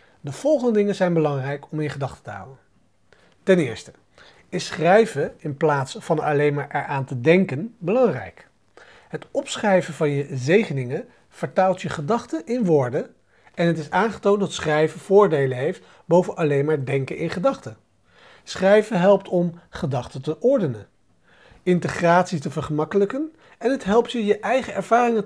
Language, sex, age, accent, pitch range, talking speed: Dutch, male, 40-59, Dutch, 145-210 Hz, 150 wpm